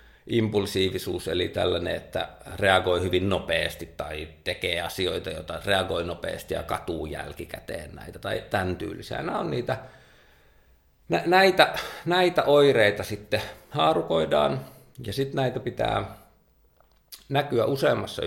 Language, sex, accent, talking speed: Finnish, male, native, 110 wpm